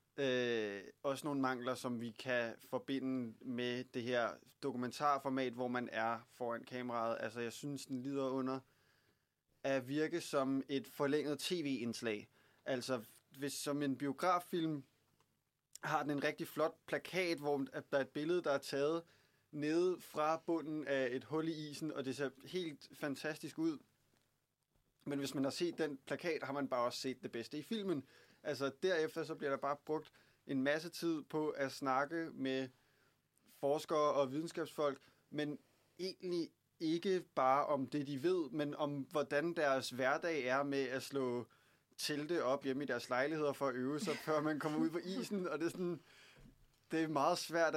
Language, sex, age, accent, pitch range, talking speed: Danish, male, 20-39, native, 130-155 Hz, 170 wpm